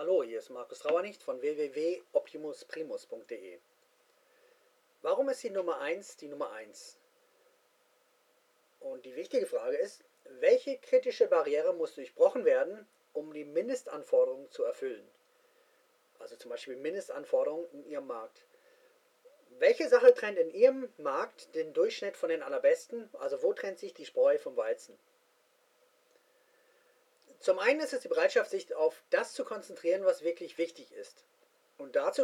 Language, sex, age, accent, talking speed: English, male, 40-59, German, 140 wpm